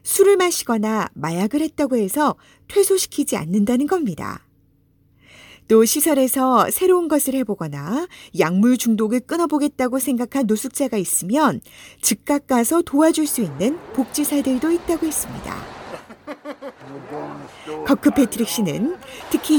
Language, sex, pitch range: Korean, female, 215-310 Hz